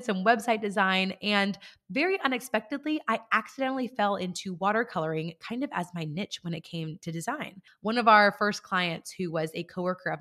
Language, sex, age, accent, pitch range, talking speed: English, female, 20-39, American, 165-225 Hz, 180 wpm